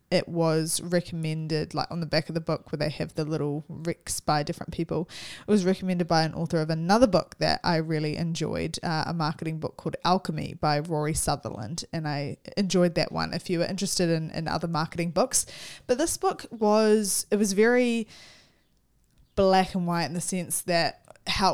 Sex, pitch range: female, 160-190 Hz